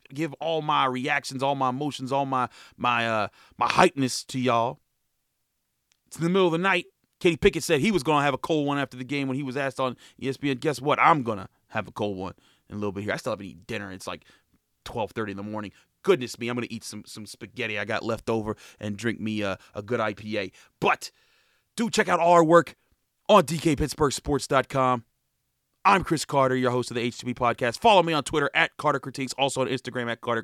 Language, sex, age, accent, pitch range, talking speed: English, male, 30-49, American, 115-145 Hz, 230 wpm